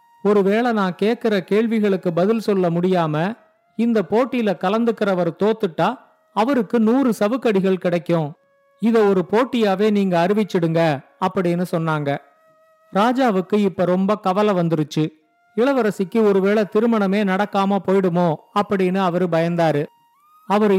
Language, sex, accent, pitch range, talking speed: Tamil, male, native, 185-225 Hz, 105 wpm